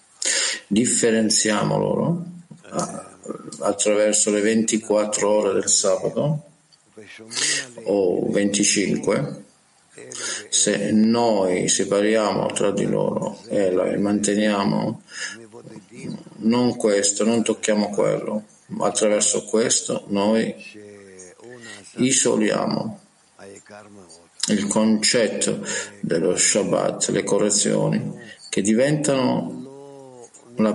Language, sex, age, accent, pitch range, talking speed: Italian, male, 50-69, native, 105-125 Hz, 70 wpm